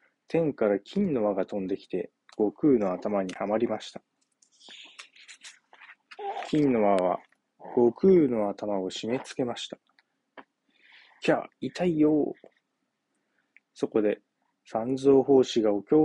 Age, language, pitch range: 20-39, Japanese, 105-140 Hz